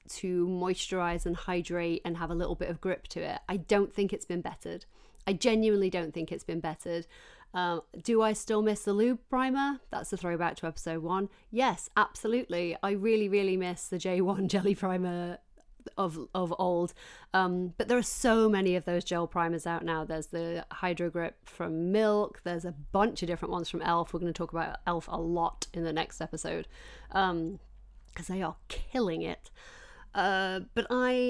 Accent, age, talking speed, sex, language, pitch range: British, 30-49, 190 wpm, female, English, 175-210 Hz